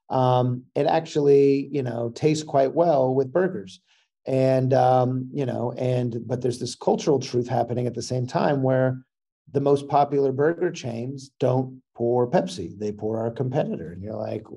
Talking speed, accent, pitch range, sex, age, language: 170 wpm, American, 120-135 Hz, male, 40-59, English